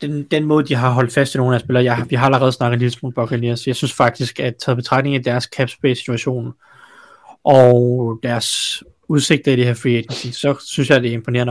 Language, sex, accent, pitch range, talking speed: Danish, male, native, 115-135 Hz, 210 wpm